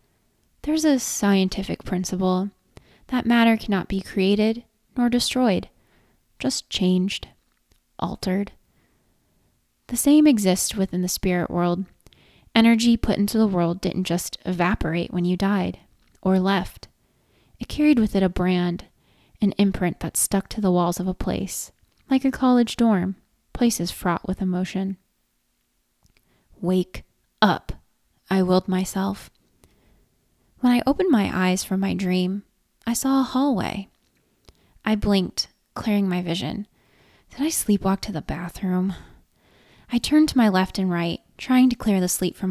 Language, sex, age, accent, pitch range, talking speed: English, female, 20-39, American, 180-215 Hz, 140 wpm